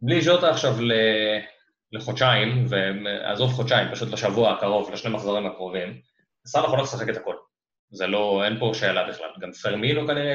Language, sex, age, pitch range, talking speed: Hebrew, male, 20-39, 105-130 Hz, 155 wpm